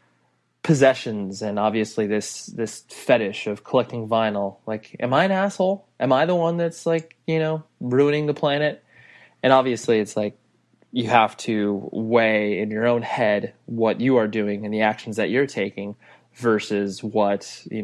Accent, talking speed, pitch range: American, 170 wpm, 100-125 Hz